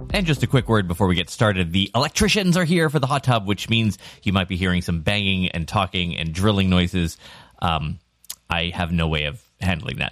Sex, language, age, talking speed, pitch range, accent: male, English, 30-49, 225 wpm, 90-135 Hz, American